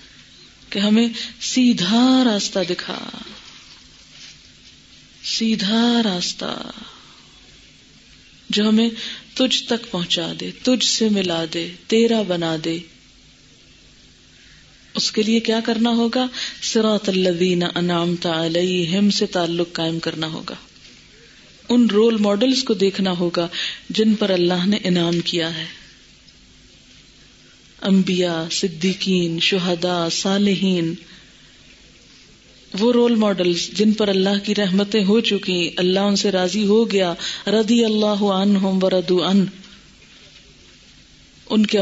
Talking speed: 105 wpm